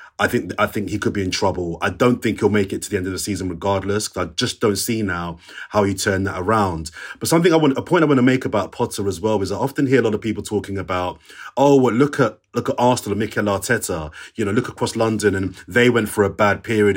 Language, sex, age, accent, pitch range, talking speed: English, male, 30-49, British, 100-125 Hz, 280 wpm